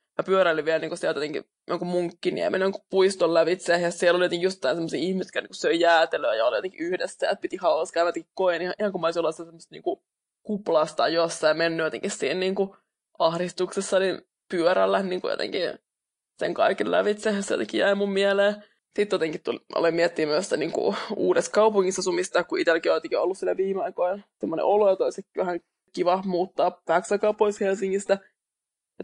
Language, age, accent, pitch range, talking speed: English, 20-39, Finnish, 175-205 Hz, 190 wpm